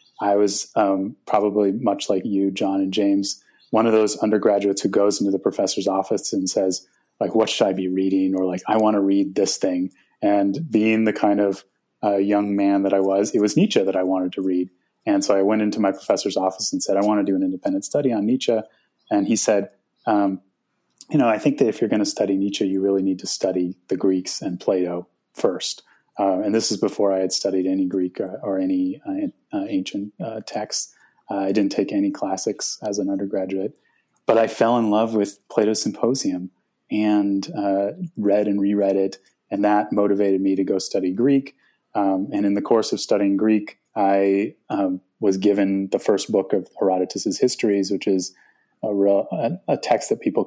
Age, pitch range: 30-49, 95-105 Hz